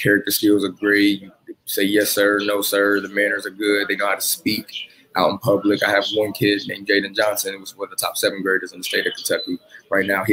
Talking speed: 255 wpm